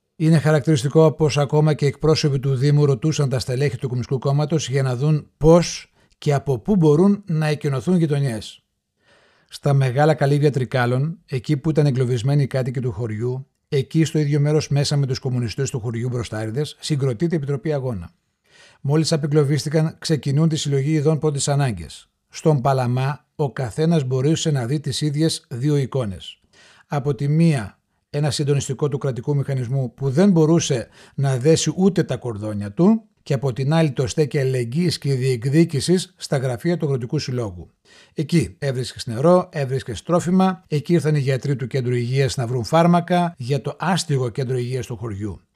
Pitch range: 130-160 Hz